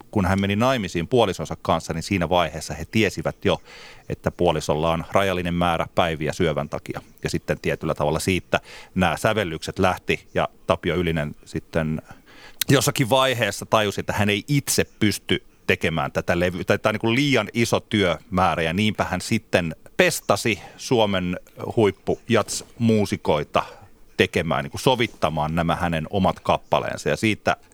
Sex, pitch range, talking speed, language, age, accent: male, 80-115 Hz, 145 wpm, Finnish, 30-49, native